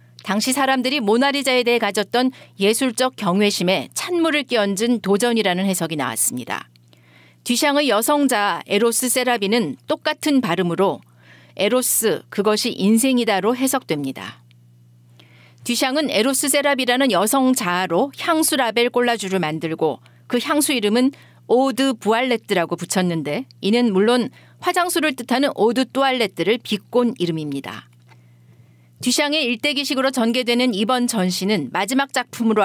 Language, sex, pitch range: Korean, female, 180-260 Hz